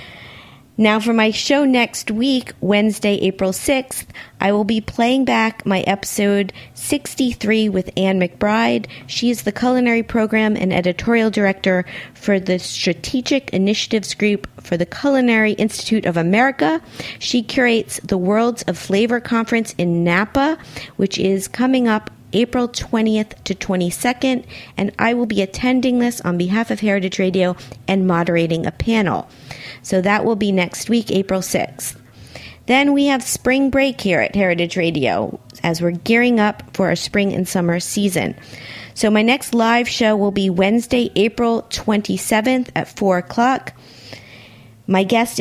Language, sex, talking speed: English, female, 150 wpm